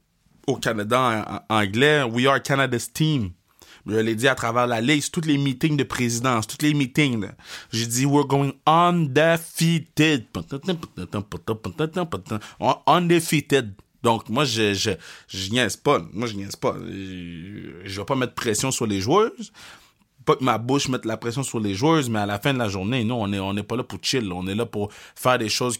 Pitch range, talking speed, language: 105-135 Hz, 210 wpm, French